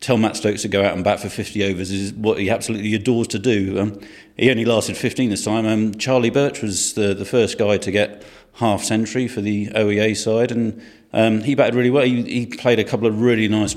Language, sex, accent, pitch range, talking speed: English, male, British, 100-120 Hz, 235 wpm